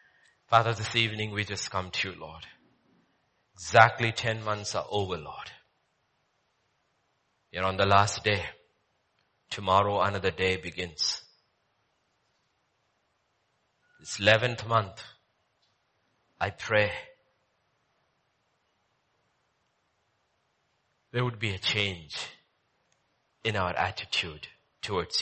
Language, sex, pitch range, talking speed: English, male, 95-110 Hz, 90 wpm